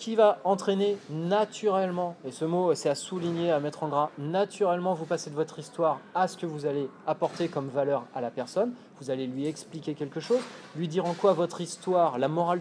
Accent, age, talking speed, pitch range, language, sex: French, 20-39, 215 wpm, 140-190 Hz, French, male